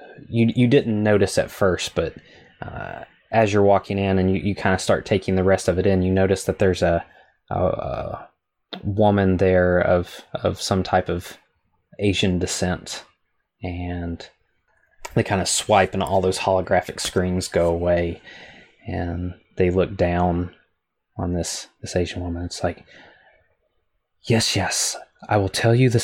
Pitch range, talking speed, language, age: 90-100 Hz, 155 wpm, English, 20-39